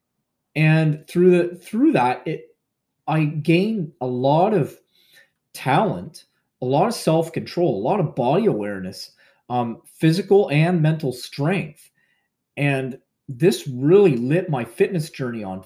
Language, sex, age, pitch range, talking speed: English, male, 30-49, 130-170 Hz, 135 wpm